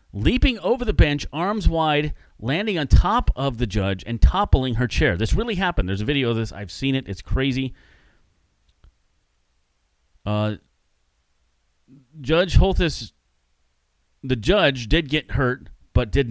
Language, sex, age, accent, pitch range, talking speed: English, male, 30-49, American, 90-140 Hz, 145 wpm